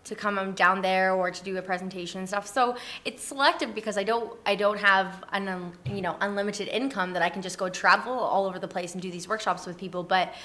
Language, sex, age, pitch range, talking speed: English, female, 20-39, 180-205 Hz, 245 wpm